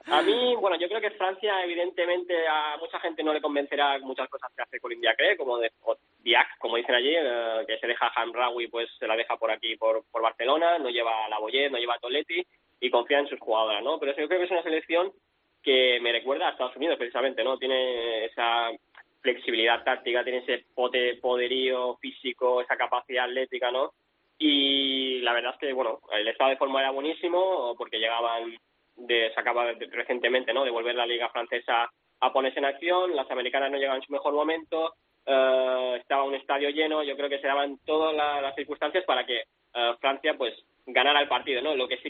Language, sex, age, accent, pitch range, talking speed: Spanish, male, 20-39, Spanish, 120-155 Hz, 210 wpm